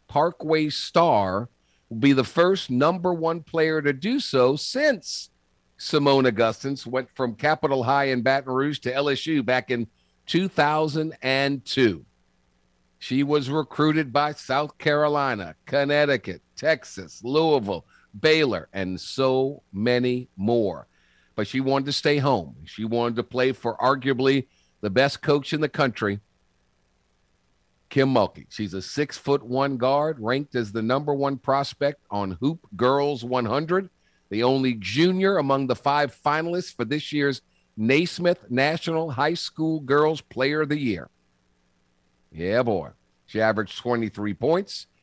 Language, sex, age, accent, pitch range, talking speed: English, male, 50-69, American, 110-150 Hz, 135 wpm